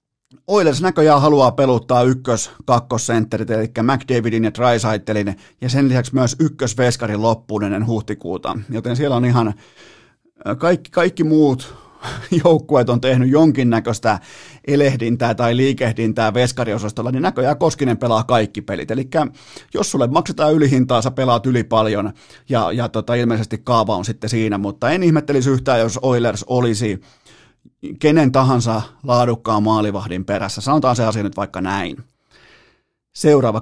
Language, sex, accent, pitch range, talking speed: Finnish, male, native, 110-140 Hz, 130 wpm